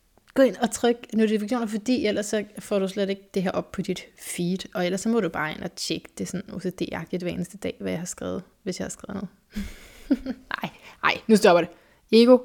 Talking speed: 230 wpm